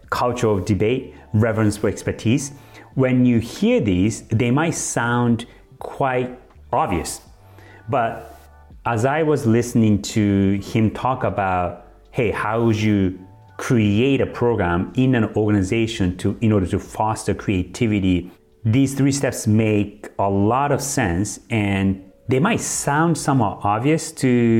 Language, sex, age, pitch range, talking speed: English, male, 30-49, 95-115 Hz, 135 wpm